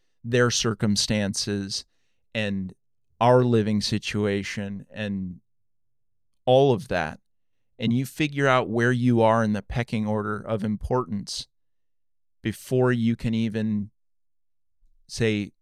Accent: American